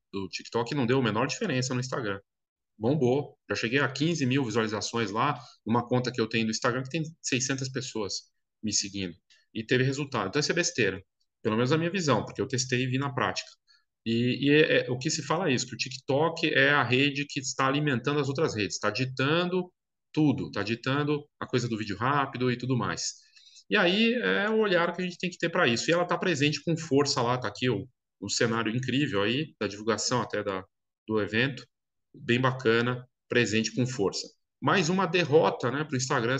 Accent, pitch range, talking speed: Brazilian, 115-150 Hz, 215 wpm